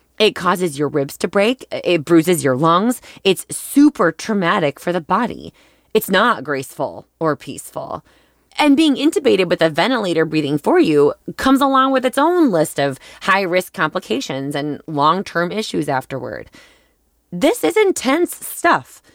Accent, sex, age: American, female, 20-39